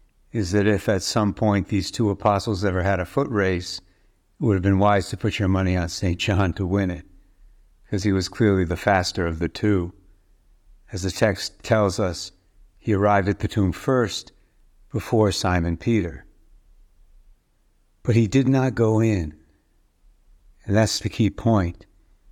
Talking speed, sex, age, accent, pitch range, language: 170 wpm, male, 60-79, American, 95-110 Hz, English